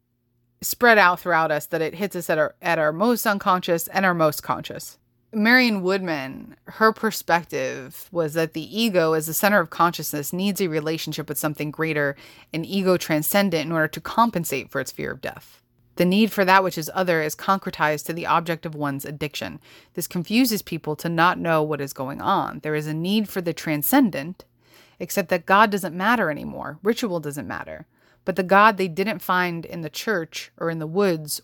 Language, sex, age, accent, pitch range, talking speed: English, female, 30-49, American, 150-190 Hz, 195 wpm